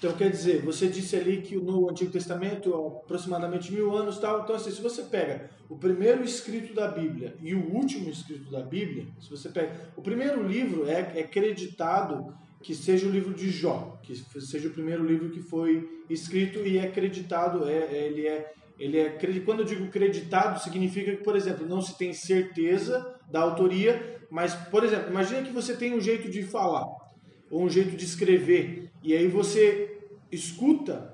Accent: Brazilian